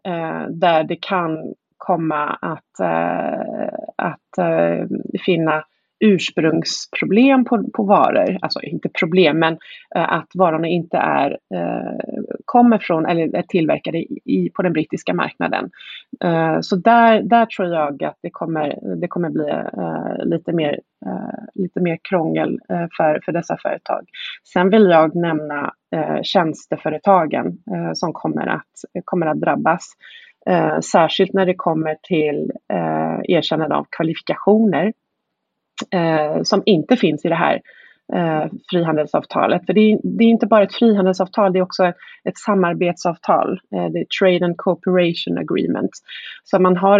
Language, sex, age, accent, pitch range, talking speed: Swedish, female, 30-49, native, 165-205 Hz, 150 wpm